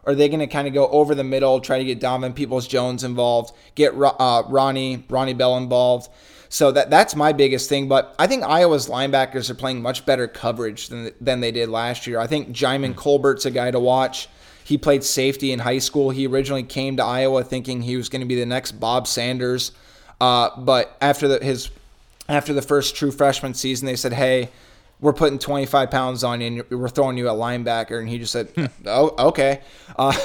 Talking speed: 215 wpm